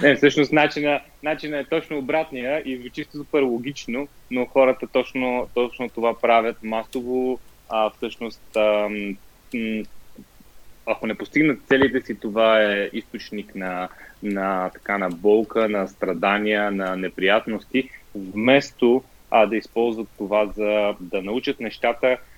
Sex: male